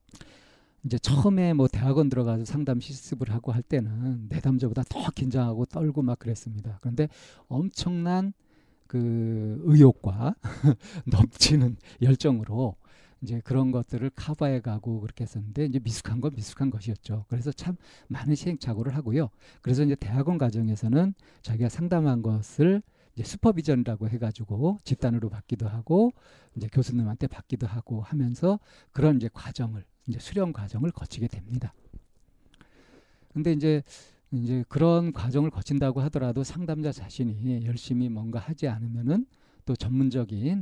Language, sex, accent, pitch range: Korean, male, native, 115-150 Hz